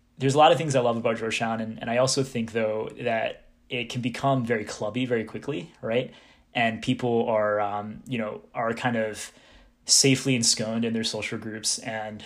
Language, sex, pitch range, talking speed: English, male, 110-130 Hz, 195 wpm